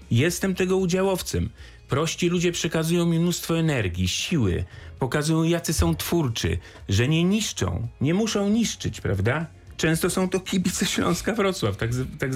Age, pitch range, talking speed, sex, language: 40-59, 100-155 Hz, 145 wpm, male, Polish